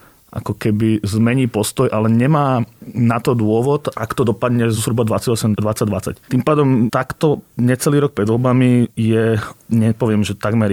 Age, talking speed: 30-49, 145 wpm